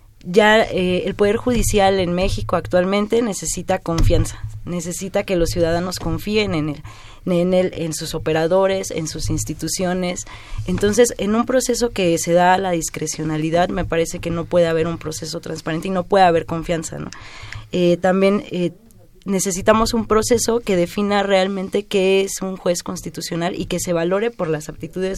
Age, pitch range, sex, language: 20-39, 160-195 Hz, female, Spanish